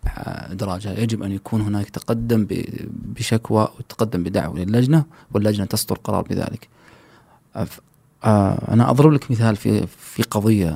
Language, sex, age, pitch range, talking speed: Arabic, male, 30-49, 100-120 Hz, 115 wpm